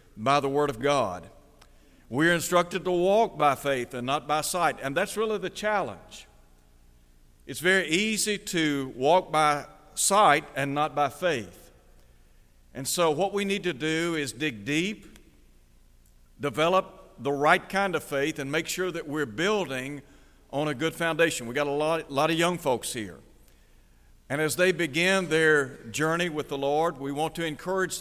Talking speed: 170 wpm